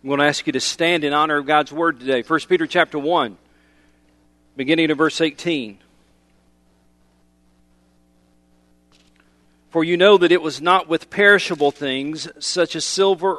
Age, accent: 40-59, American